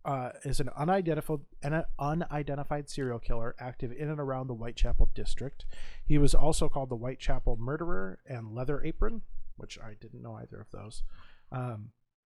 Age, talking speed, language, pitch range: 30-49, 160 wpm, English, 120-150 Hz